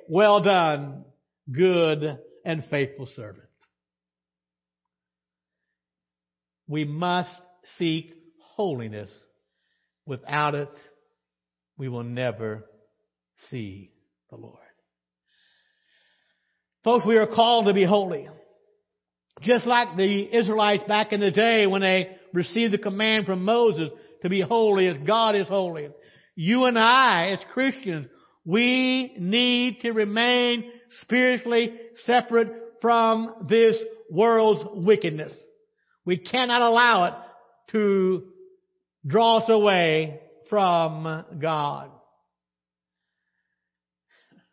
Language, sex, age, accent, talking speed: English, male, 60-79, American, 95 wpm